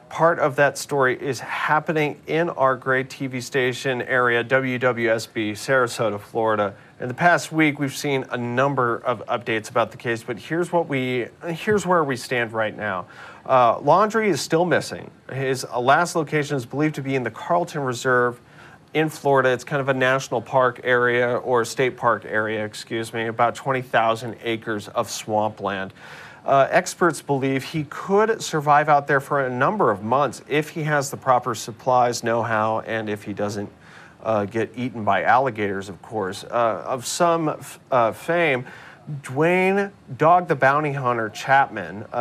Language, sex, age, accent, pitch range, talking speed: English, male, 40-59, American, 115-145 Hz, 165 wpm